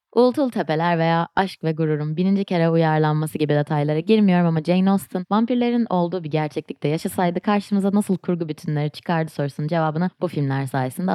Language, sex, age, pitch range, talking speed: Turkish, female, 20-39, 150-195 Hz, 160 wpm